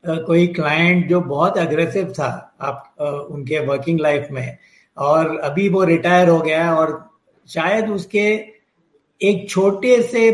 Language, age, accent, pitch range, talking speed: Hindi, 60-79, native, 165-215 Hz, 145 wpm